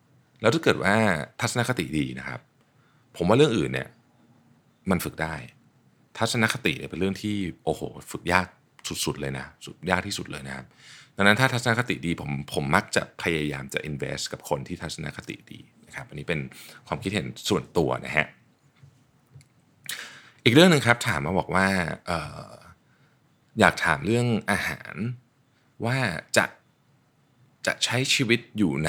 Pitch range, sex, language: 85-130 Hz, male, Thai